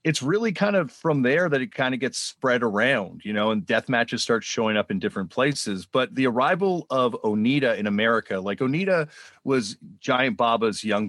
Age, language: 40-59, English